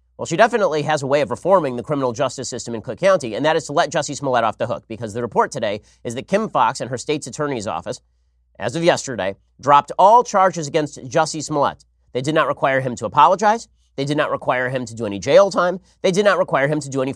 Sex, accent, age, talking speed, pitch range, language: male, American, 30-49, 250 wpm, 120-160 Hz, English